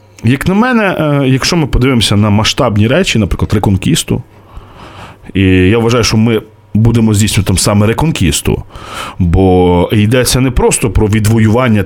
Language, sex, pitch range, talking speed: Ukrainian, male, 100-140 Hz, 130 wpm